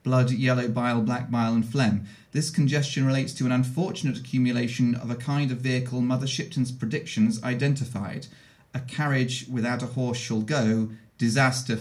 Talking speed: 160 wpm